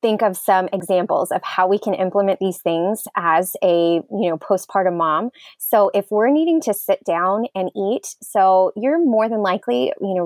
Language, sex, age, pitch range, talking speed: English, female, 20-39, 185-220 Hz, 195 wpm